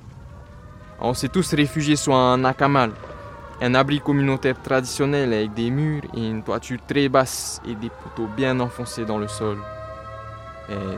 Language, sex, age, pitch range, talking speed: French, male, 20-39, 100-125 Hz, 155 wpm